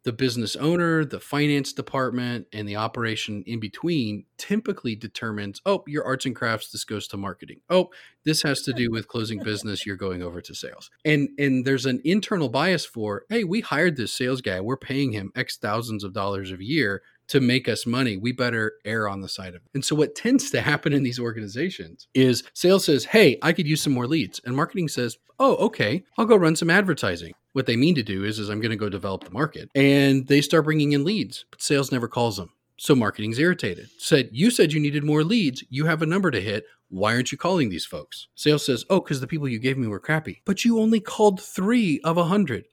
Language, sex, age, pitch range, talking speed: English, male, 40-59, 110-155 Hz, 230 wpm